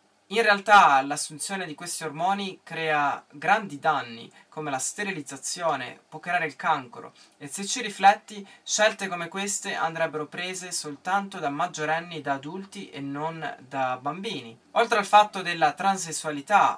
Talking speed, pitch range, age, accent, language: 140 wpm, 150-200 Hz, 20-39, native, Italian